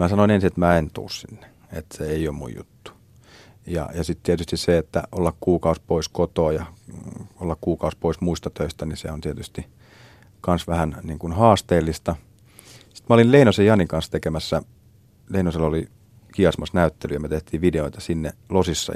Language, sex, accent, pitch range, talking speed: Finnish, male, native, 80-110 Hz, 175 wpm